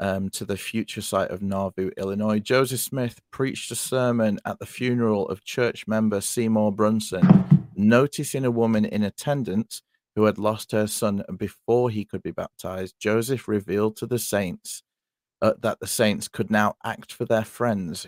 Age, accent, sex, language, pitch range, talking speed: 40-59, British, male, English, 100-120 Hz, 170 wpm